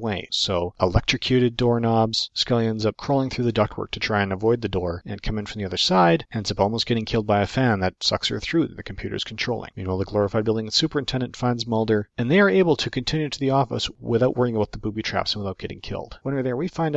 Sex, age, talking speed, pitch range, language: male, 40-59, 250 wpm, 95-120 Hz, English